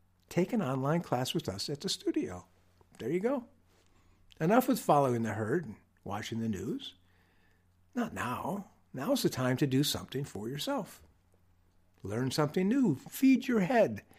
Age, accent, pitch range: 60-79, American, 105-155 Hz